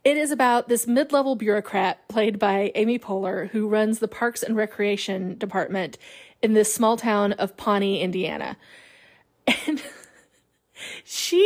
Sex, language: female, English